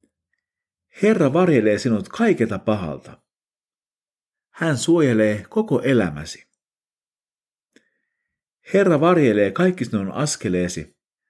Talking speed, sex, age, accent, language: 75 wpm, male, 50-69, native, Finnish